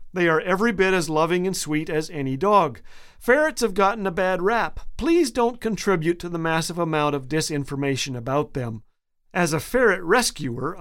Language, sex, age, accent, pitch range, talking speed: English, male, 50-69, American, 150-195 Hz, 180 wpm